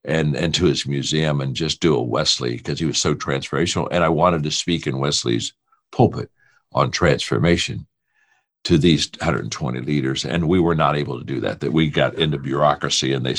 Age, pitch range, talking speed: 60-79, 75-110 Hz, 195 wpm